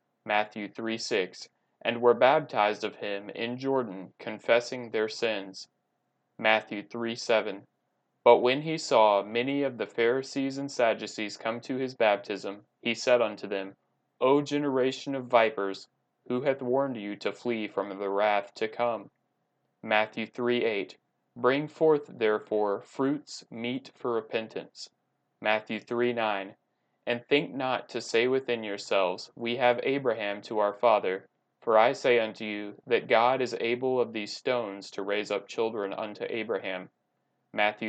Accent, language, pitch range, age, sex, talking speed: American, English, 105-125 Hz, 20-39, male, 150 wpm